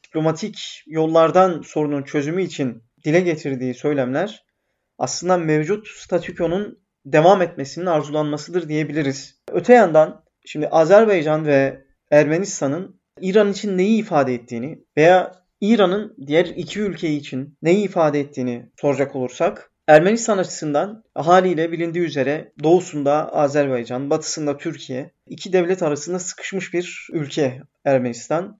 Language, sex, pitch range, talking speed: Turkish, male, 145-185 Hz, 110 wpm